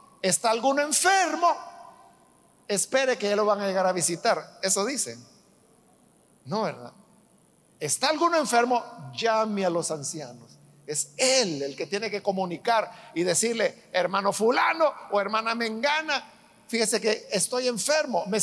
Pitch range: 210-290 Hz